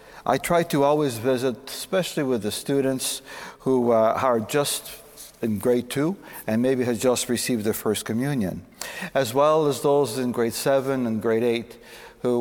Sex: male